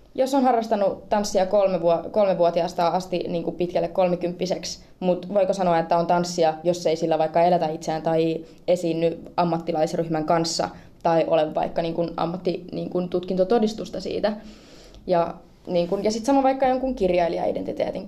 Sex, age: female, 20-39